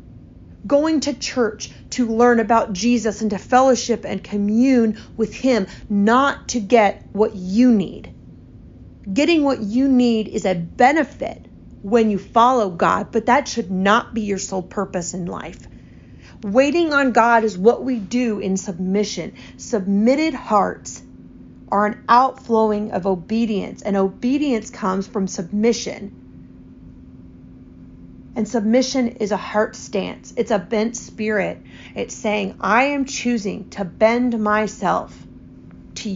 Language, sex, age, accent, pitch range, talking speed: English, female, 40-59, American, 195-240 Hz, 135 wpm